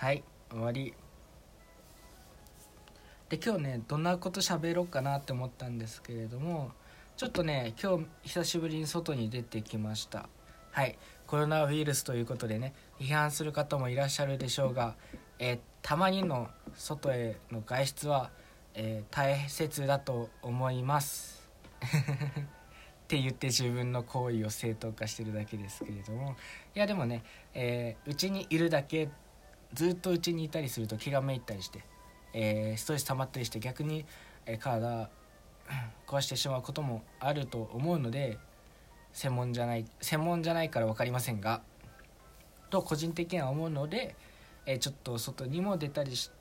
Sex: male